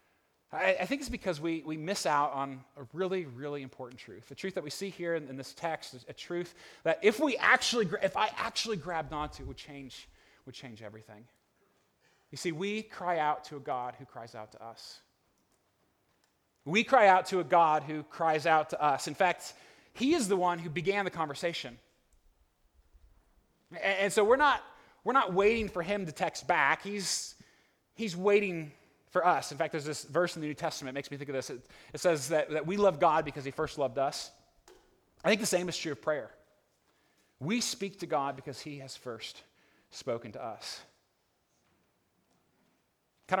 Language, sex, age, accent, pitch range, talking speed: English, male, 30-49, American, 130-175 Hz, 195 wpm